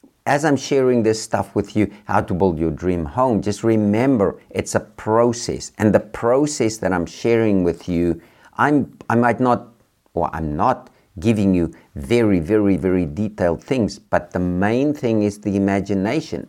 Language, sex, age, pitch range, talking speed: English, male, 50-69, 90-115 Hz, 170 wpm